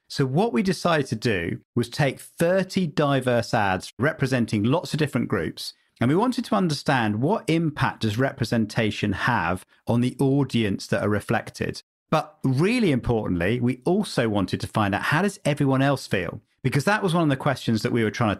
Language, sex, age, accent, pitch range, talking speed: English, male, 40-59, British, 110-150 Hz, 190 wpm